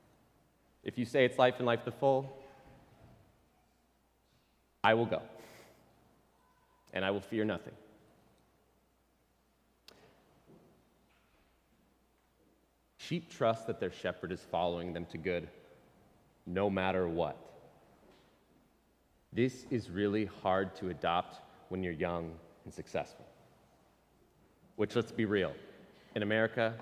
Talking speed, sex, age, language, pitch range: 105 wpm, male, 30-49, English, 95-125 Hz